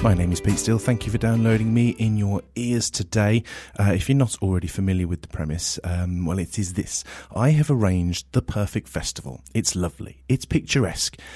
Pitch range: 90-115 Hz